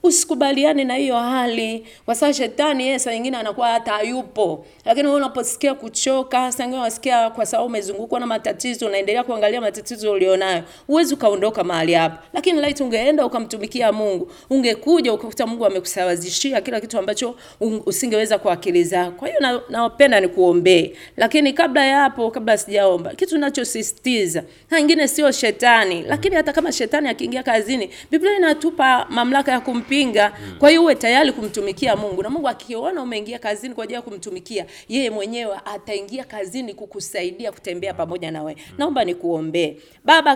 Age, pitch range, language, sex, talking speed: 30-49, 205-280 Hz, Swahili, female, 160 wpm